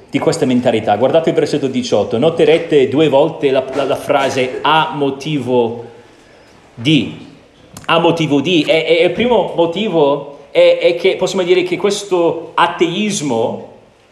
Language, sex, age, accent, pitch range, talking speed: Italian, male, 40-59, native, 160-205 Hz, 140 wpm